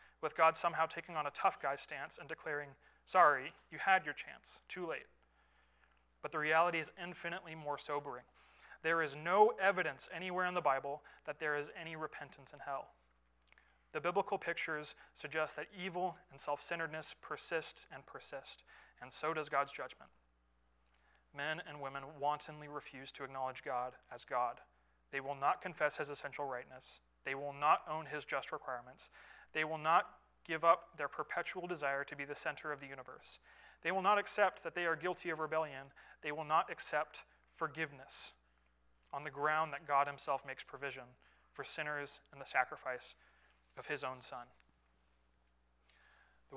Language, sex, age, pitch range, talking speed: English, male, 30-49, 130-160 Hz, 165 wpm